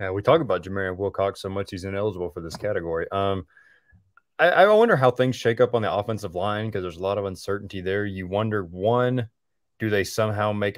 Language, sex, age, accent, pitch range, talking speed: English, male, 20-39, American, 95-110 Hz, 215 wpm